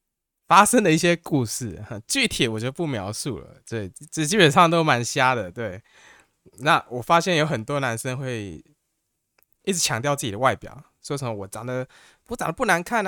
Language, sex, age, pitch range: Chinese, male, 20-39, 110-155 Hz